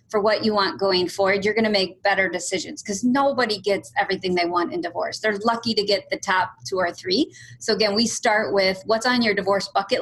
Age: 30-49